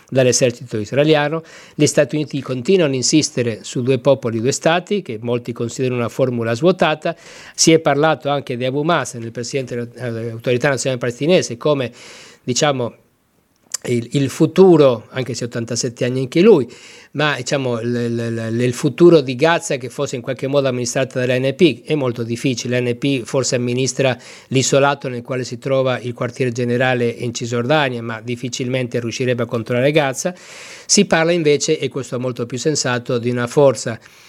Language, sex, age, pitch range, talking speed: Italian, male, 50-69, 120-145 Hz, 160 wpm